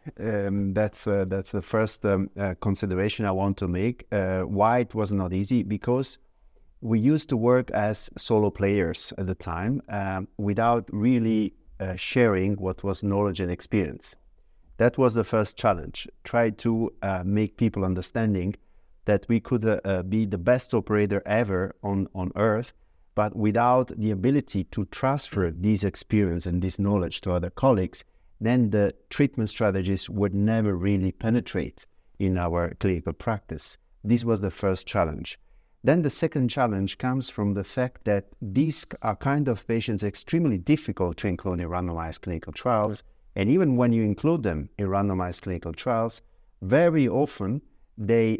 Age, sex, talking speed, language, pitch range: 50-69, male, 160 wpm, English, 95-115 Hz